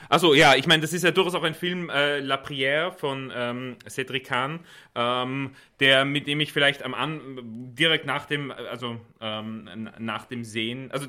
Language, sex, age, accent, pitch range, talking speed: German, male, 30-49, German, 110-135 Hz, 190 wpm